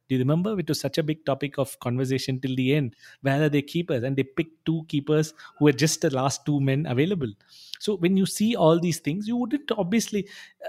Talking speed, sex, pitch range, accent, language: 230 wpm, male, 130-165 Hz, Indian, English